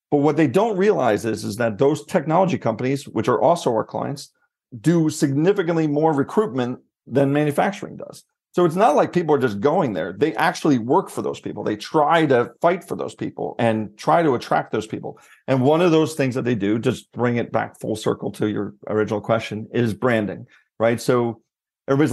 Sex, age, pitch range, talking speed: male, 40-59, 120-160 Hz, 200 wpm